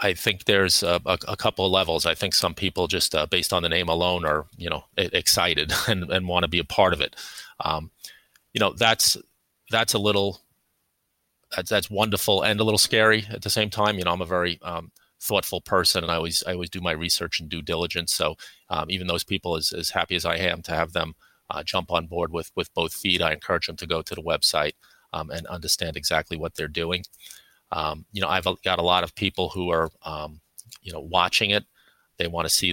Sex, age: male, 30-49